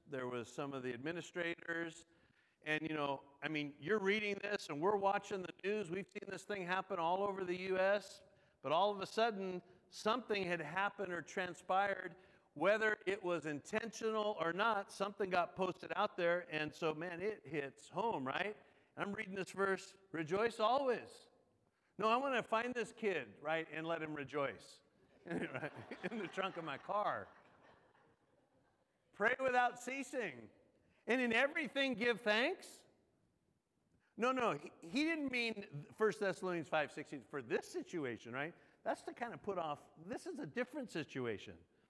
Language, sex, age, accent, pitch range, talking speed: English, male, 50-69, American, 170-225 Hz, 160 wpm